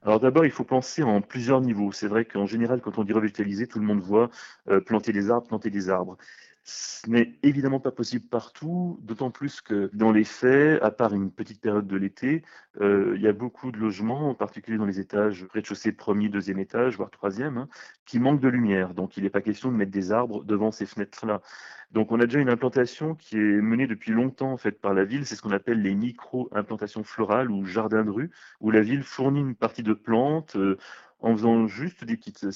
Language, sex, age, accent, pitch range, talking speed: French, male, 30-49, French, 105-130 Hz, 225 wpm